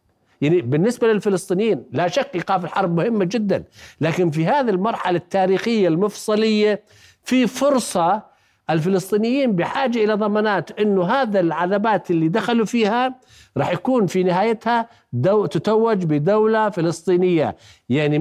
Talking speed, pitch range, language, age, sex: 120 wpm, 180-220 Hz, Arabic, 50-69, male